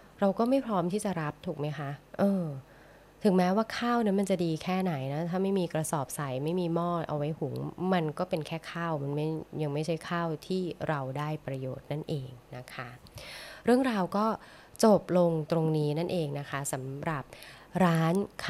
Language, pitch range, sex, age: Thai, 145-175 Hz, female, 20-39